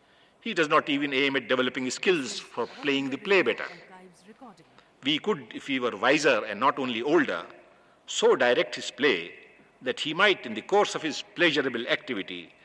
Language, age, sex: English, 50-69, male